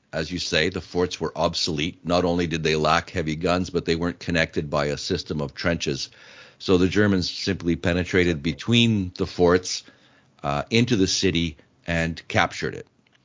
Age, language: 50-69, English